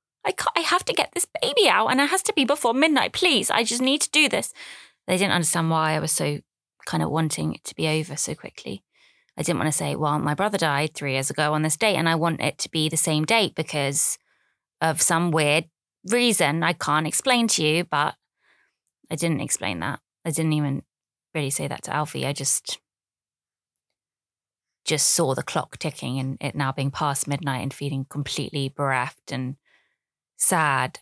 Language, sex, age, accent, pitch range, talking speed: English, female, 20-39, British, 145-180 Hz, 200 wpm